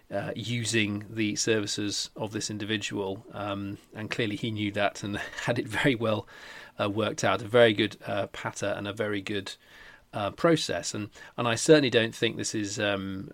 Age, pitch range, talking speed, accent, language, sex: 30-49, 105-120 Hz, 185 wpm, British, English, male